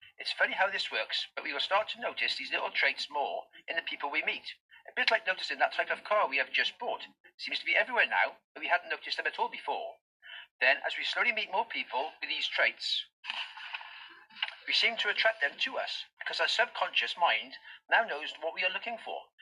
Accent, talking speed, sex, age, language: British, 225 wpm, male, 40-59, English